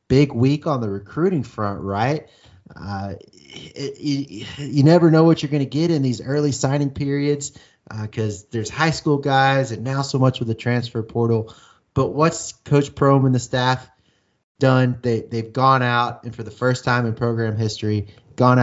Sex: male